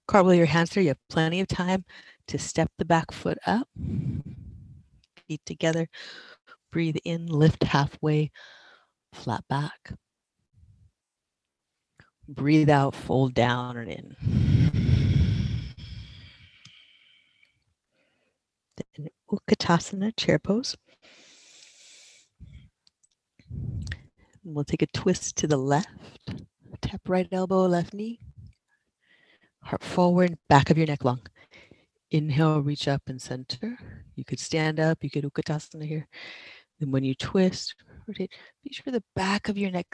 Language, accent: English, American